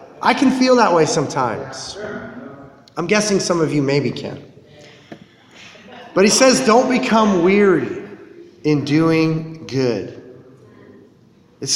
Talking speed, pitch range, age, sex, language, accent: 115 wpm, 165-245 Hz, 20-39, male, English, American